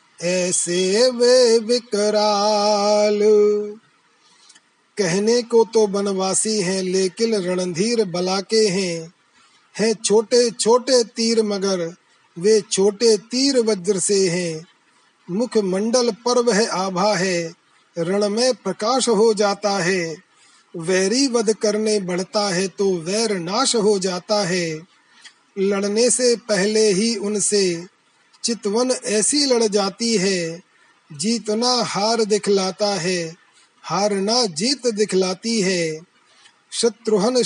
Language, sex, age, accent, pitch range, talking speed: Hindi, male, 30-49, native, 190-225 Hz, 105 wpm